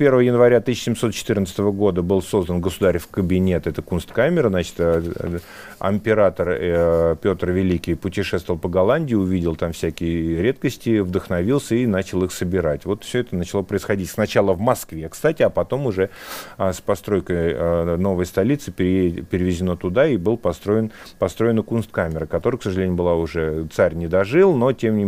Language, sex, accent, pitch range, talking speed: Russian, male, native, 85-110 Hz, 145 wpm